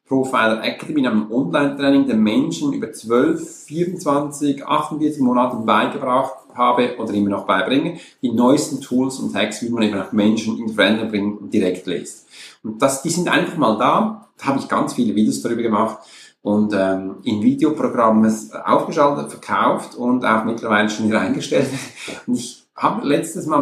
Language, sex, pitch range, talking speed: German, male, 110-150 Hz, 165 wpm